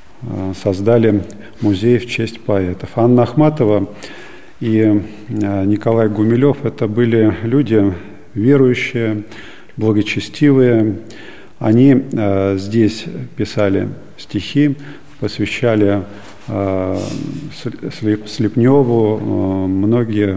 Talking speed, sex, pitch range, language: 80 wpm, male, 100-120 Hz, Russian